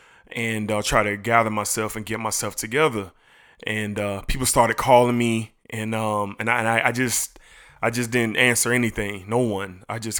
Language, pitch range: English, 105-120 Hz